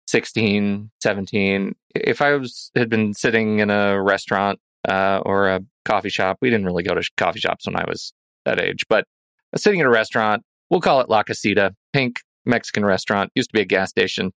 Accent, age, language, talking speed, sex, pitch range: American, 30-49, English, 200 wpm, male, 105-145 Hz